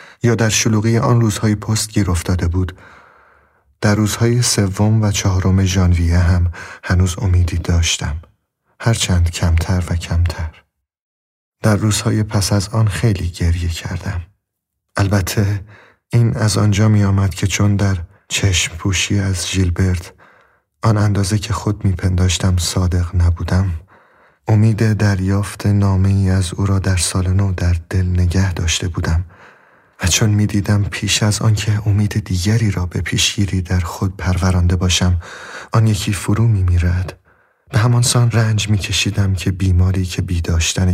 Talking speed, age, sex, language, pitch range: 140 wpm, 30-49, male, Persian, 90-105 Hz